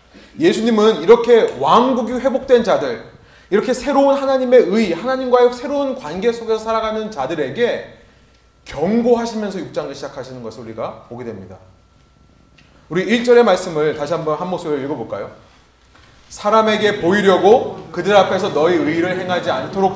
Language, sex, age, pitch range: Korean, male, 30-49, 160-235 Hz